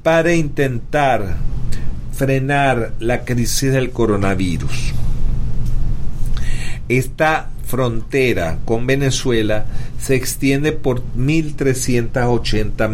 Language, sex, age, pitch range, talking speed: English, male, 40-59, 115-135 Hz, 70 wpm